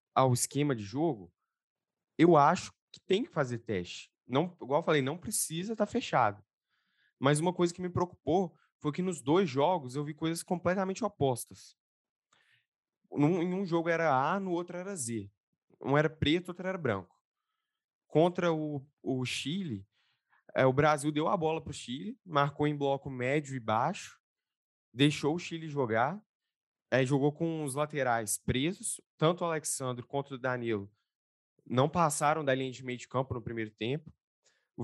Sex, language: male, Portuguese